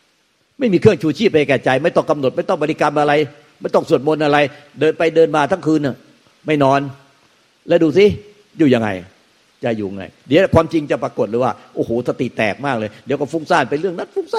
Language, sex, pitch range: Thai, male, 125-170 Hz